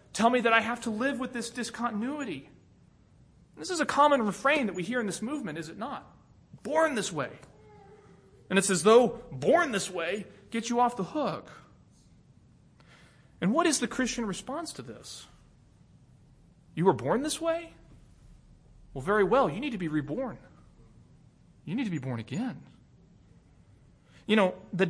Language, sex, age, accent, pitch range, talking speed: English, male, 30-49, American, 170-245 Hz, 165 wpm